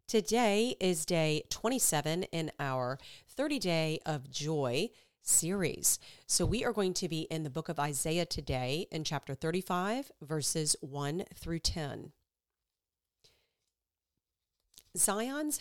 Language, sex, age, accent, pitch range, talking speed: English, female, 40-59, American, 150-190 Hz, 115 wpm